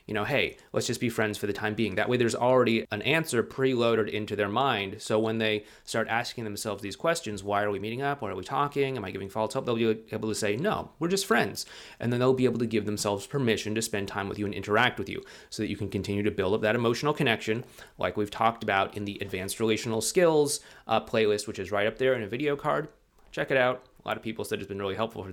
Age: 30-49